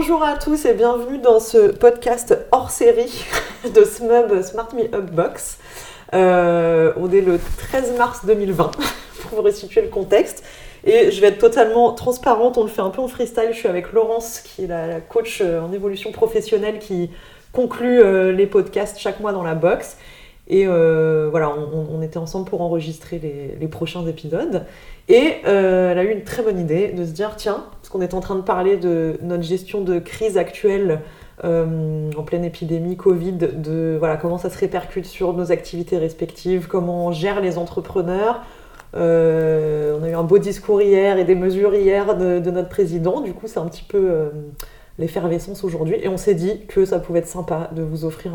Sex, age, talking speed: female, 30-49, 195 wpm